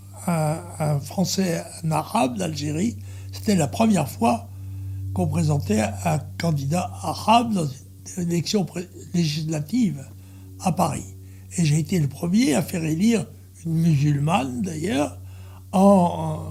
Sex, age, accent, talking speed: male, 60-79, French, 120 wpm